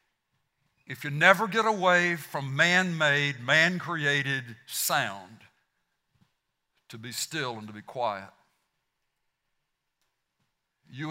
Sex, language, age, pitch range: male, English, 60-79, 120-160 Hz